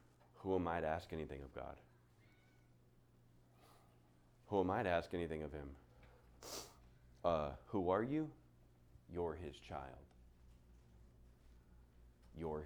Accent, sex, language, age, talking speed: American, male, English, 30-49, 115 wpm